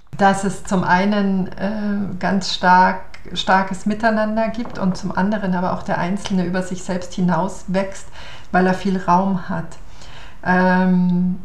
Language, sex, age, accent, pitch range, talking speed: German, female, 50-69, German, 180-205 Hz, 140 wpm